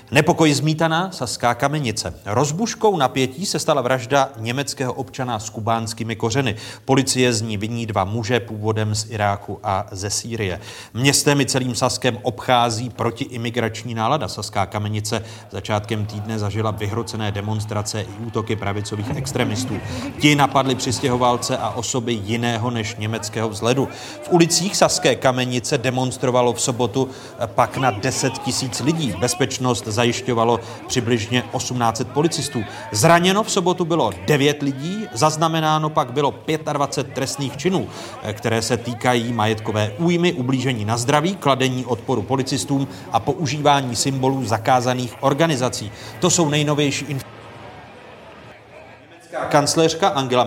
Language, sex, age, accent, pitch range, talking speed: Czech, male, 30-49, native, 110-140 Hz, 125 wpm